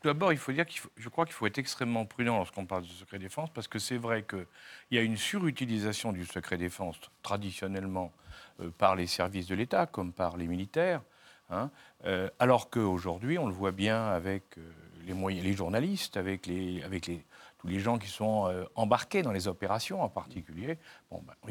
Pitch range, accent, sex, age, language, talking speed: 95-125 Hz, French, male, 50-69, French, 205 wpm